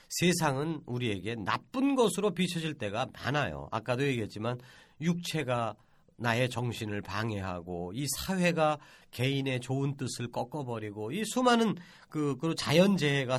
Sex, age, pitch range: male, 40-59, 130-200 Hz